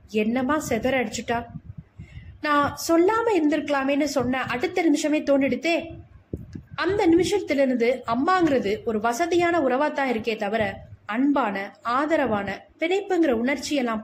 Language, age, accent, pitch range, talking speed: Tamil, 20-39, native, 215-315 Hz, 95 wpm